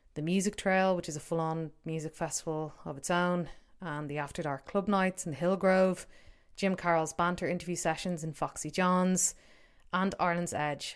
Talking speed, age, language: 170 wpm, 30-49, English